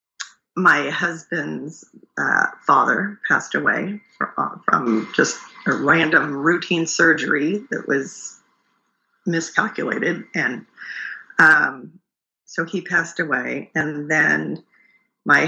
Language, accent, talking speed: English, American, 95 wpm